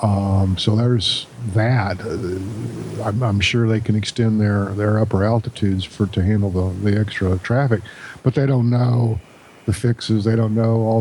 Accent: American